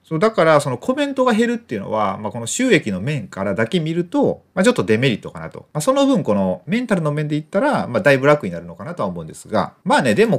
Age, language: 30-49, Japanese